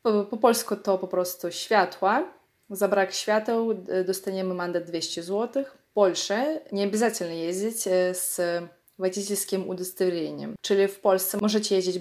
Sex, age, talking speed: female, 20-39, 130 wpm